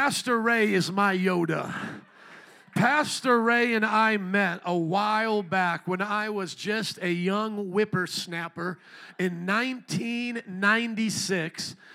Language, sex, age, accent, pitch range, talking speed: English, male, 40-59, American, 185-215 Hz, 110 wpm